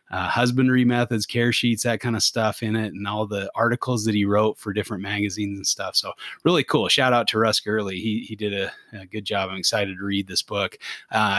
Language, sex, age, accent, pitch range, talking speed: English, male, 30-49, American, 100-115 Hz, 235 wpm